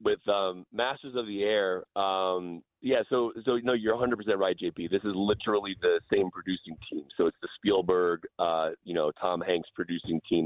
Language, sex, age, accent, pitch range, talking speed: English, male, 30-49, American, 85-115 Hz, 195 wpm